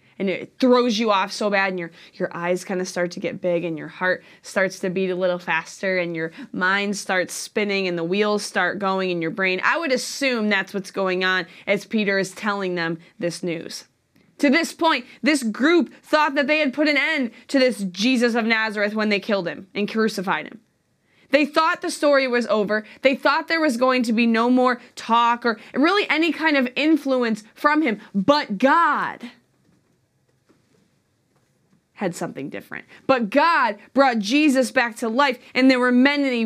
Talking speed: 195 wpm